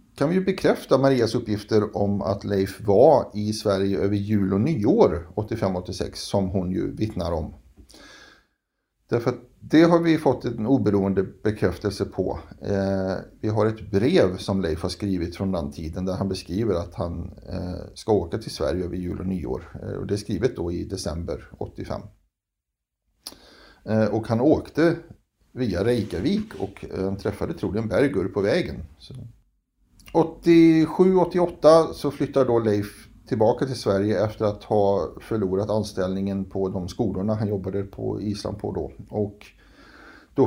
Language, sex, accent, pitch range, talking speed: Swedish, male, native, 95-115 Hz, 145 wpm